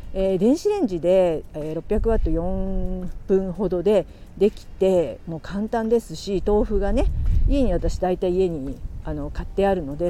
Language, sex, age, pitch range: Japanese, female, 50-69, 170-235 Hz